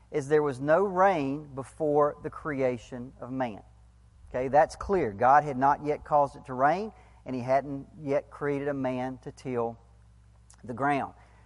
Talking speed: 170 wpm